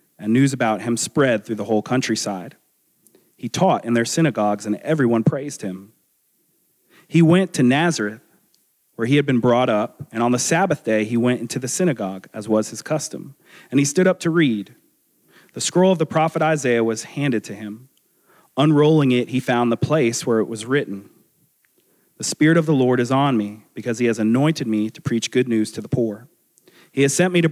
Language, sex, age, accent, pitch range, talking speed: English, male, 30-49, American, 115-160 Hz, 205 wpm